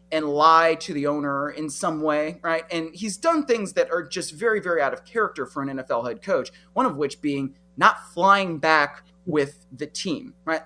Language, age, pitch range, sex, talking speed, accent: English, 30-49, 140-185 Hz, male, 210 wpm, American